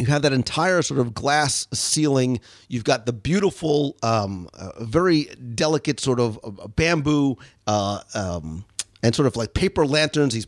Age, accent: 40-59, American